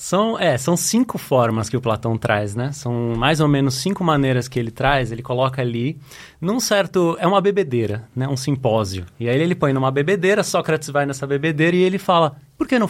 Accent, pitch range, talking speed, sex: Brazilian, 120-160 Hz, 210 wpm, male